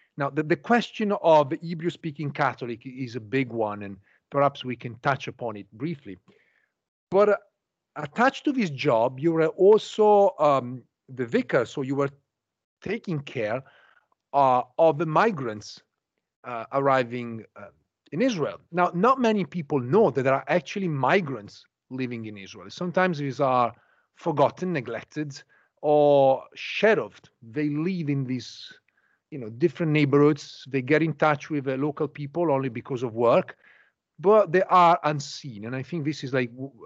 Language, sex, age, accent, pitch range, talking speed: English, male, 40-59, Italian, 135-185 Hz, 155 wpm